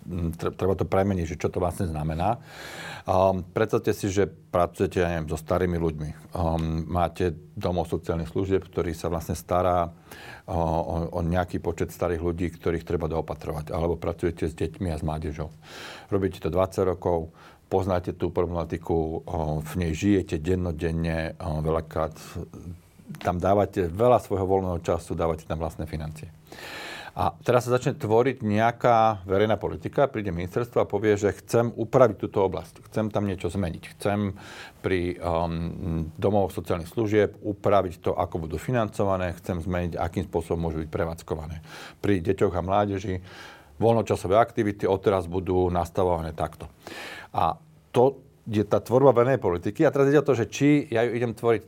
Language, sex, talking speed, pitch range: Slovak, male, 155 wpm, 85-105 Hz